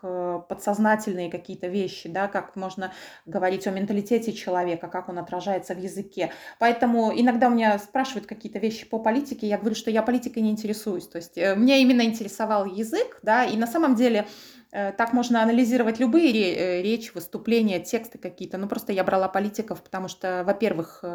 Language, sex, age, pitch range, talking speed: Russian, female, 20-39, 185-230 Hz, 160 wpm